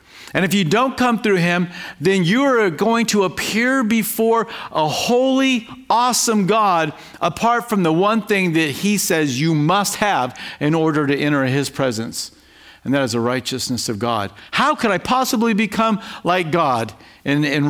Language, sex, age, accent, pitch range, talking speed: English, male, 50-69, American, 140-190 Hz, 175 wpm